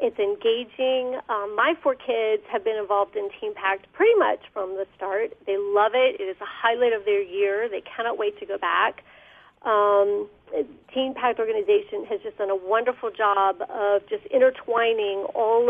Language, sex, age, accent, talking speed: English, female, 40-59, American, 180 wpm